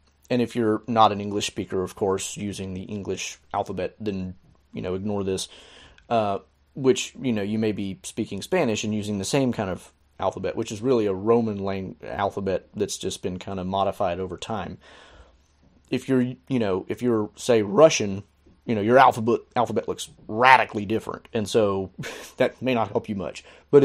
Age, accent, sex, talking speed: 30-49, American, male, 185 wpm